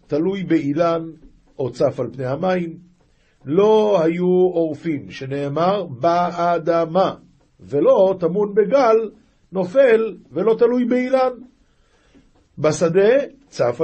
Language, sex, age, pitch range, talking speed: Hebrew, male, 50-69, 135-180 Hz, 90 wpm